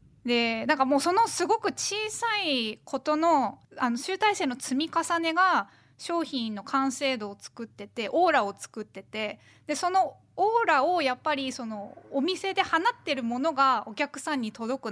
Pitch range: 215-310 Hz